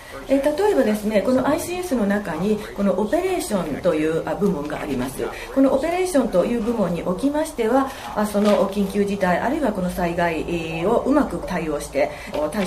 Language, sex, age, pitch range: Japanese, female, 40-59, 180-280 Hz